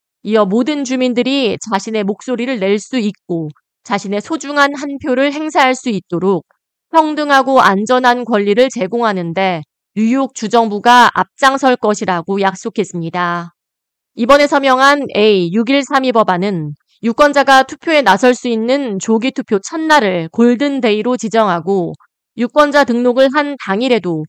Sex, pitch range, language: female, 195-270 Hz, Korean